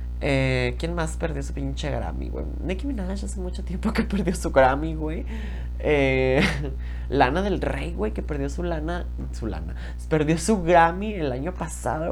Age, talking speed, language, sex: 20-39, 175 wpm, Spanish, male